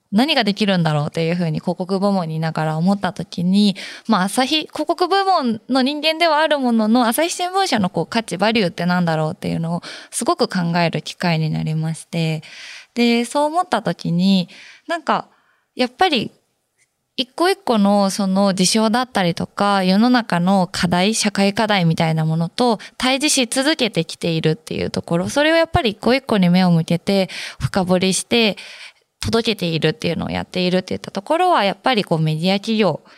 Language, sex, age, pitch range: Japanese, female, 20-39, 180-255 Hz